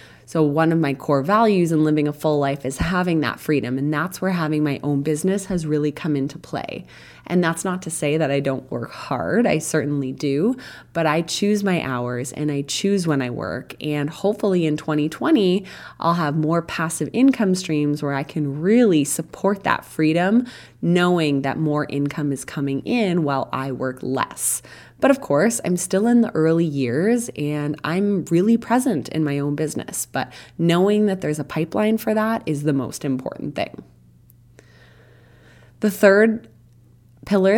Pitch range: 140-180 Hz